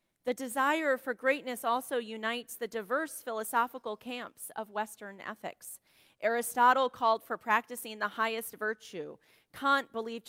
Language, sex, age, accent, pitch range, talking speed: English, female, 40-59, American, 215-260 Hz, 130 wpm